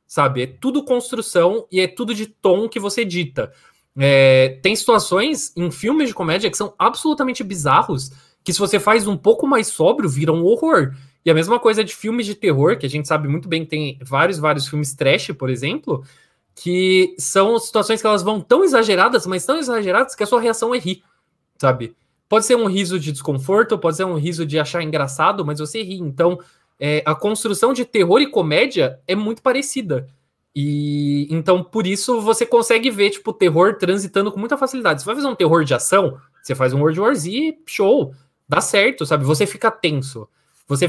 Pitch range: 150-215 Hz